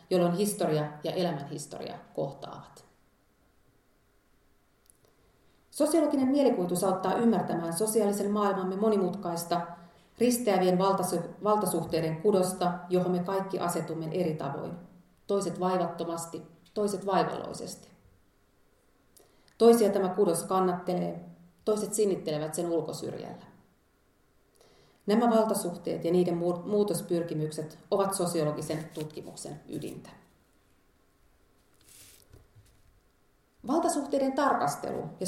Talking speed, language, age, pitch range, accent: 80 wpm, Finnish, 30-49, 165-200 Hz, native